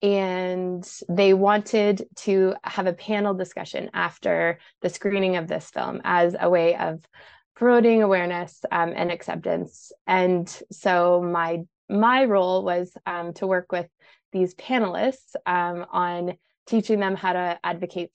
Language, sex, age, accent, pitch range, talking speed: English, female, 20-39, American, 175-195 Hz, 140 wpm